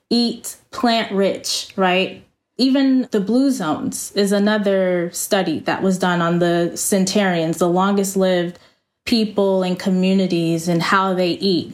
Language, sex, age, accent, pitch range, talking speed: English, female, 20-39, American, 185-255 Hz, 140 wpm